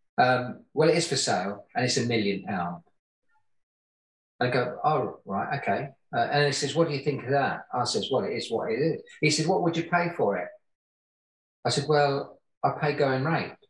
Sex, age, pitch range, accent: male, 40-59, 140-170 Hz, British